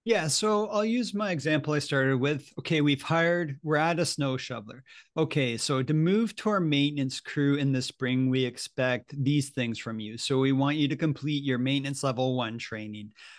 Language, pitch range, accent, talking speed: English, 125-145 Hz, American, 200 wpm